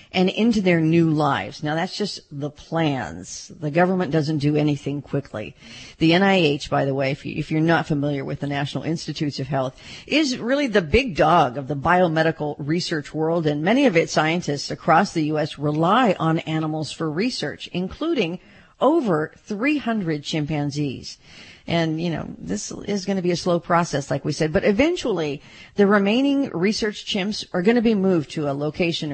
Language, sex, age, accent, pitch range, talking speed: English, female, 50-69, American, 150-195 Hz, 175 wpm